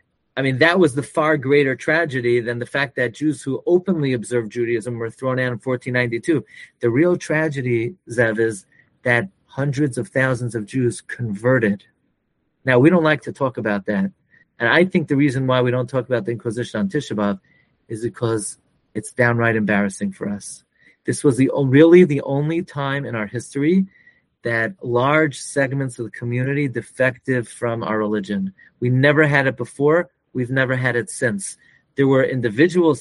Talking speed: 175 wpm